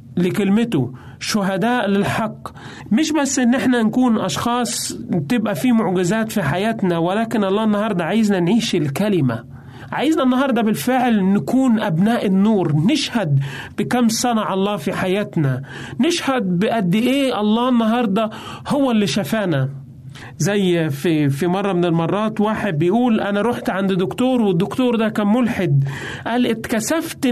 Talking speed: 125 wpm